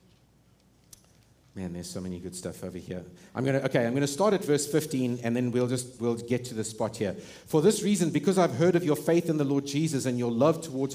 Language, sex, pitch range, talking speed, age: English, male, 125-175 Hz, 250 wpm, 50-69